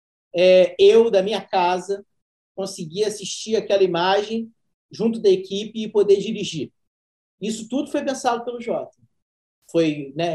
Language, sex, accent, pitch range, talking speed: Portuguese, male, Brazilian, 160-210 Hz, 135 wpm